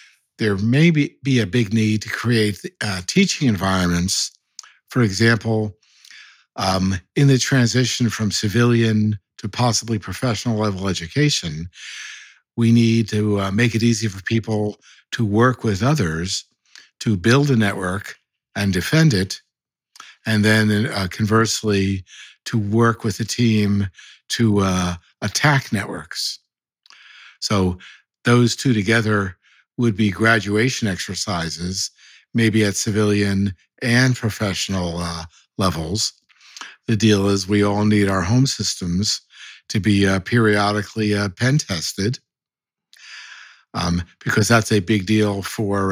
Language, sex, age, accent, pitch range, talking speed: English, male, 60-79, American, 95-115 Hz, 125 wpm